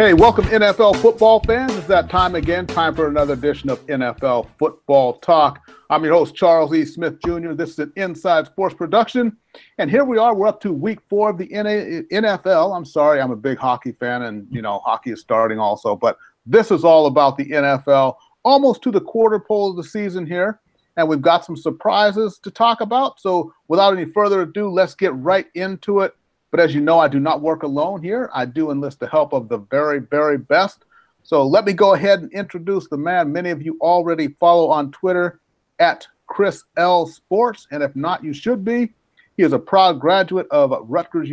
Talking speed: 205 wpm